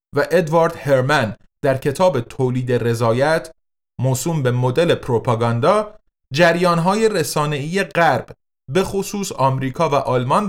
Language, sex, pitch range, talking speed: Persian, male, 130-185 Hz, 110 wpm